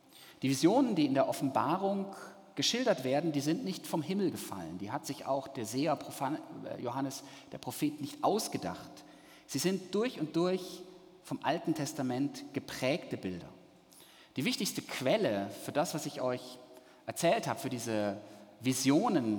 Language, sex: German, male